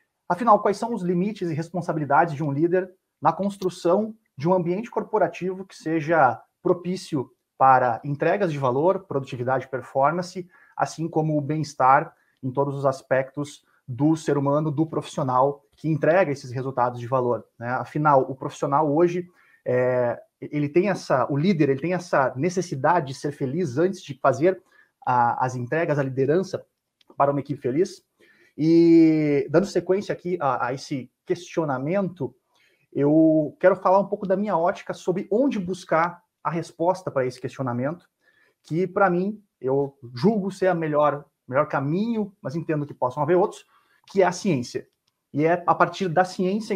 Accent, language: Brazilian, Portuguese